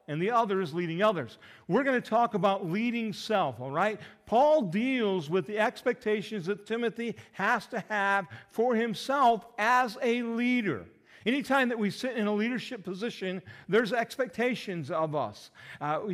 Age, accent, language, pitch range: 50-69, American, English, 165-220 Hz